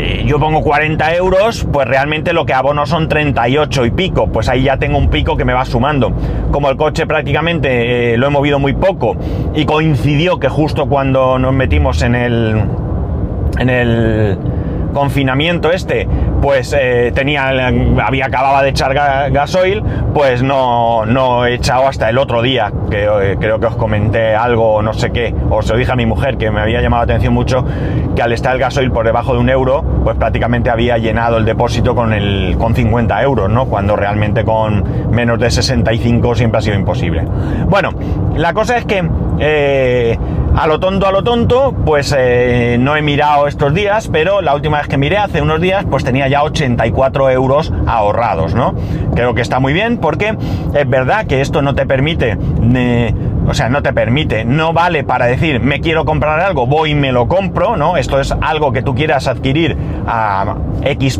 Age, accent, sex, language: 30-49, Spanish, male, Spanish